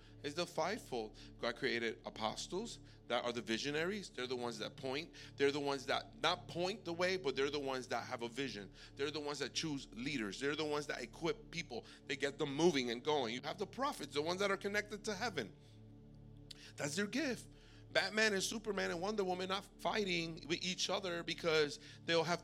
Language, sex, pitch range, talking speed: English, male, 130-180 Hz, 205 wpm